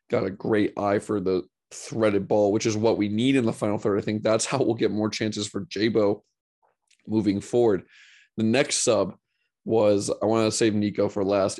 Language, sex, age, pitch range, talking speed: English, male, 20-39, 105-110 Hz, 205 wpm